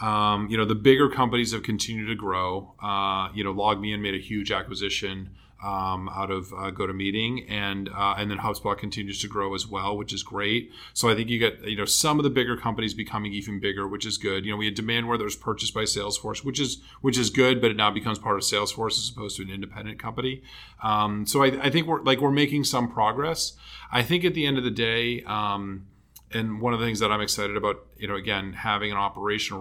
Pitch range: 100-115 Hz